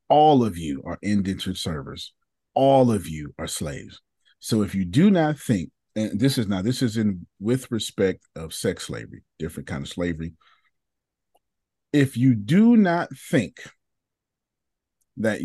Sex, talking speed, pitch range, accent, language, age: male, 150 wpm, 110-160 Hz, American, English, 40-59